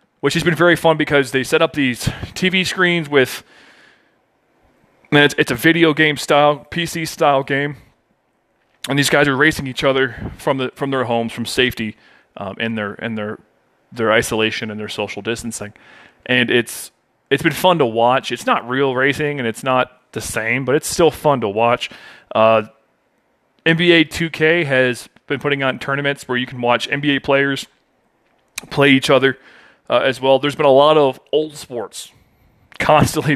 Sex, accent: male, American